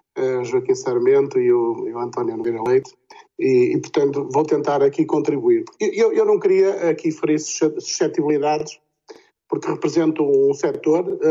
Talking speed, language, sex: 140 wpm, Portuguese, male